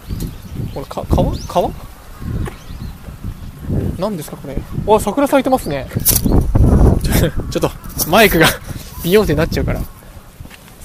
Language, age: Japanese, 20-39